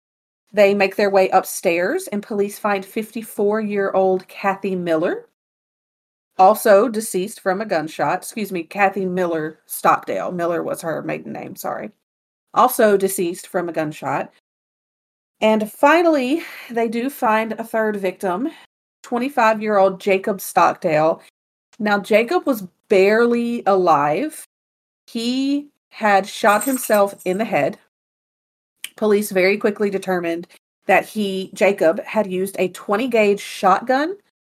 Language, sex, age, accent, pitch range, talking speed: English, female, 40-59, American, 185-235 Hz, 115 wpm